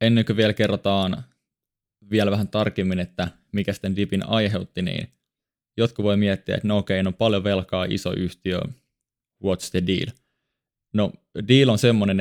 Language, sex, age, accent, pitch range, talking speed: Finnish, male, 20-39, native, 95-115 Hz, 160 wpm